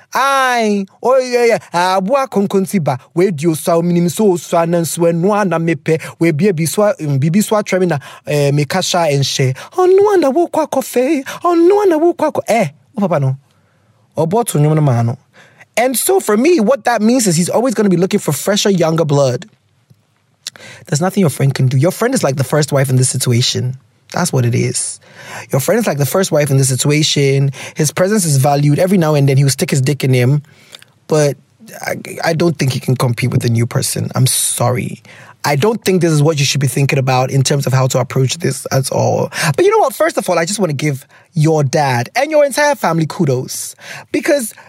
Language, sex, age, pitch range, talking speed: English, male, 20-39, 135-205 Hz, 215 wpm